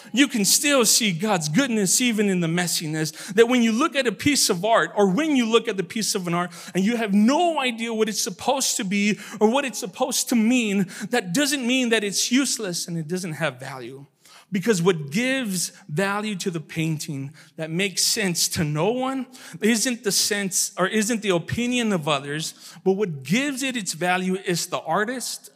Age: 40-59